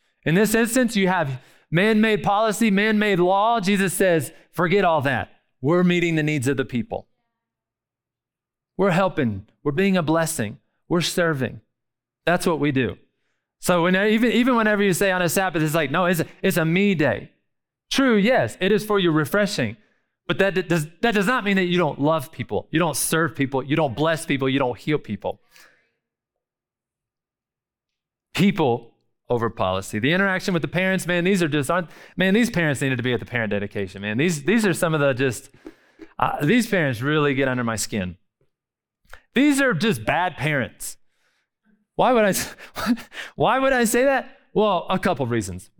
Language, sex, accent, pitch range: English, male, American, 130-195 Hz